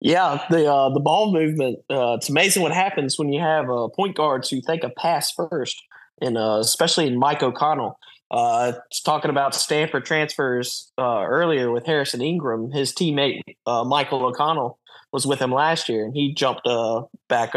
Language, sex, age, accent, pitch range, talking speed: English, male, 20-39, American, 120-150 Hz, 185 wpm